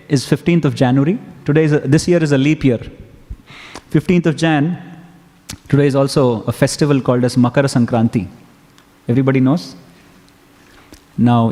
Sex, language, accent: male, English, Indian